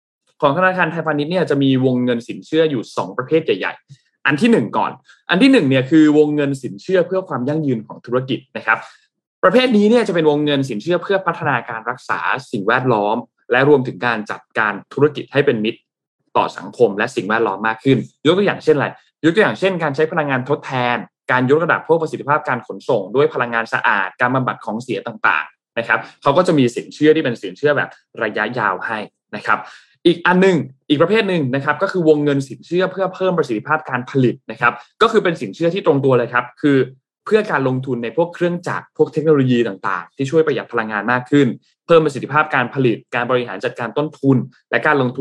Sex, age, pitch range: male, 20-39, 125-160 Hz